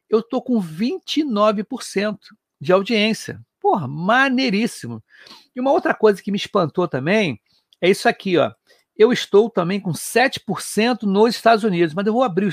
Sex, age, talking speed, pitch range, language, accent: male, 60-79, 160 wpm, 185-230 Hz, Portuguese, Brazilian